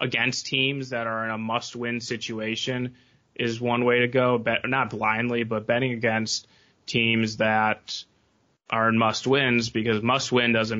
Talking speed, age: 145 wpm, 20-39